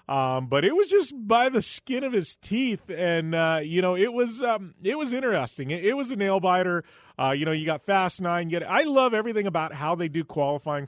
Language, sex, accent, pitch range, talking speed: English, male, American, 130-205 Hz, 250 wpm